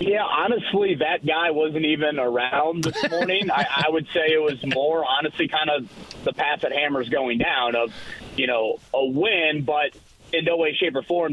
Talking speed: 195 wpm